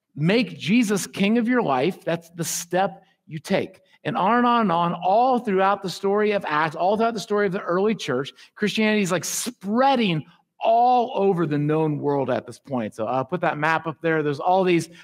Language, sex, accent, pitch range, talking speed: English, male, American, 160-215 Hz, 210 wpm